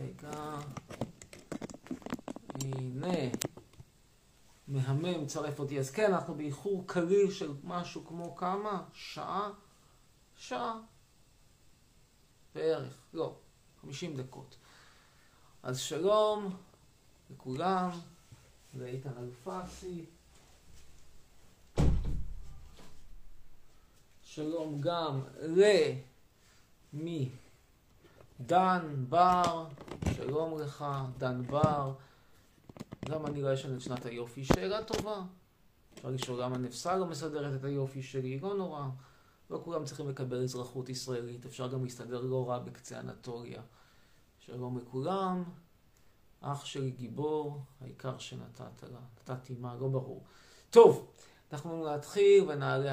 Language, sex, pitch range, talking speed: Hebrew, male, 125-170 Hz, 95 wpm